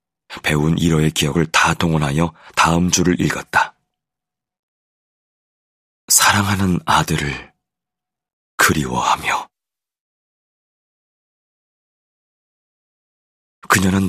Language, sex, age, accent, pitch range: Korean, male, 40-59, native, 80-100 Hz